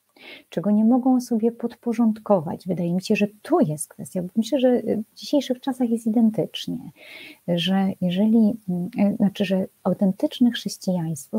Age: 30-49